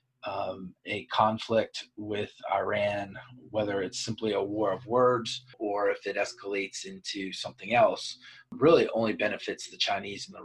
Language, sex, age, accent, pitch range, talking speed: English, male, 30-49, American, 100-125 Hz, 150 wpm